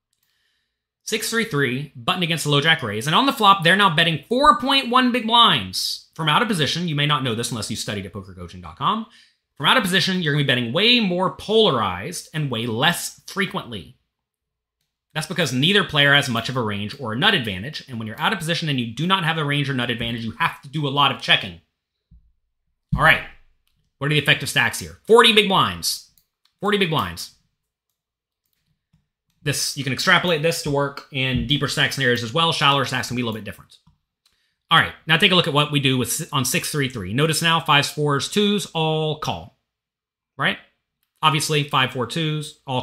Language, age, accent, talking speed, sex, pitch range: English, 30-49, American, 200 wpm, male, 125-190 Hz